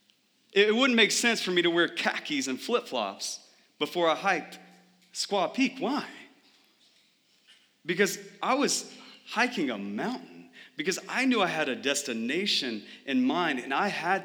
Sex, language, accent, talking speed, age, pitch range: male, English, American, 145 wpm, 30-49, 140-215 Hz